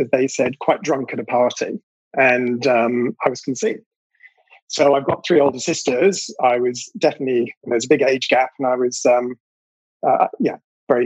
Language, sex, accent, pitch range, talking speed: English, male, British, 120-145 Hz, 195 wpm